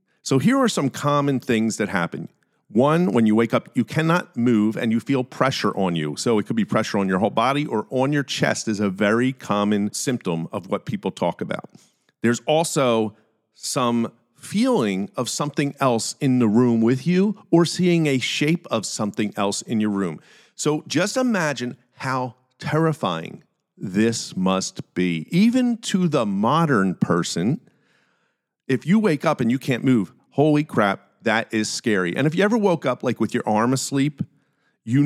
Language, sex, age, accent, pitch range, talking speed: English, male, 50-69, American, 110-150 Hz, 180 wpm